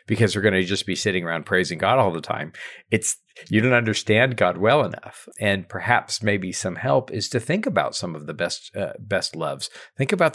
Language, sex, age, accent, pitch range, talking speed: English, male, 50-69, American, 100-130 Hz, 220 wpm